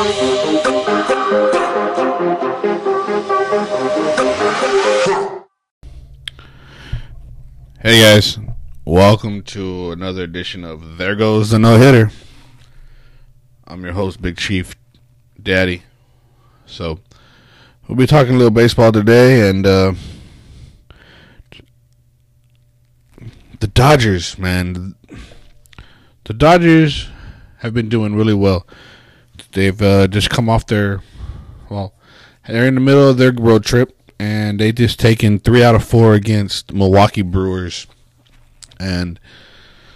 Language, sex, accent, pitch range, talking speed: English, male, American, 95-120 Hz, 95 wpm